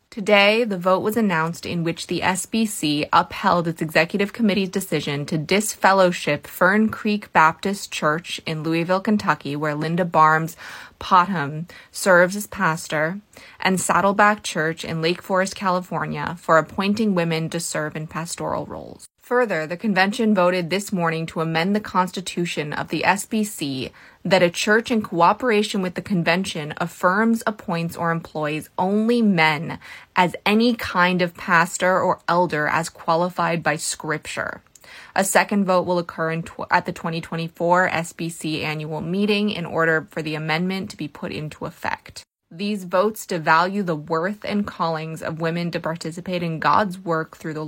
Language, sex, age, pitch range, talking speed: English, female, 20-39, 160-200 Hz, 150 wpm